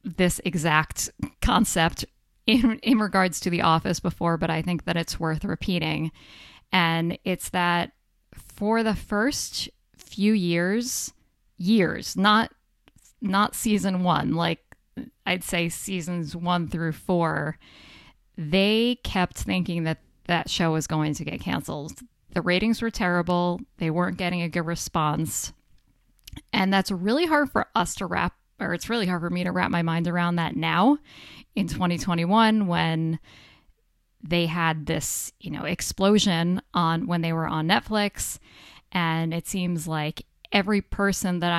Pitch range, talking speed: 165-200 Hz, 145 wpm